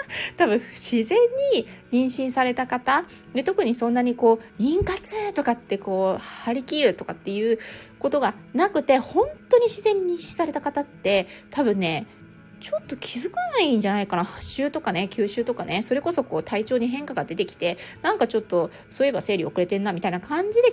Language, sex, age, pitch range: Japanese, female, 30-49, 205-345 Hz